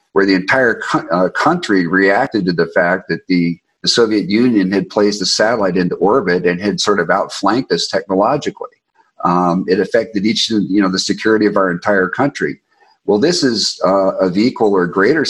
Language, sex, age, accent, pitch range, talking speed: English, male, 50-69, American, 90-105 Hz, 185 wpm